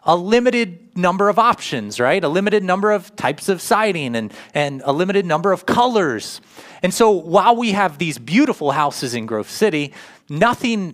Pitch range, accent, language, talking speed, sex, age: 140-195 Hz, American, English, 175 wpm, male, 30-49